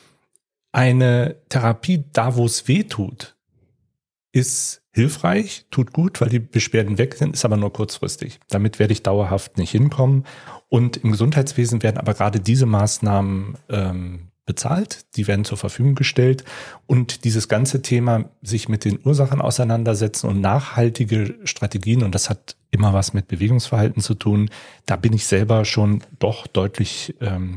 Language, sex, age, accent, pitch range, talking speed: German, male, 40-59, German, 105-130 Hz, 150 wpm